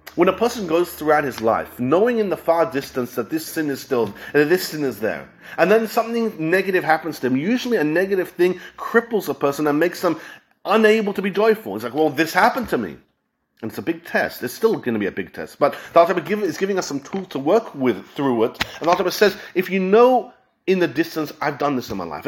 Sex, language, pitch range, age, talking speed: male, English, 155-200 Hz, 30-49, 250 wpm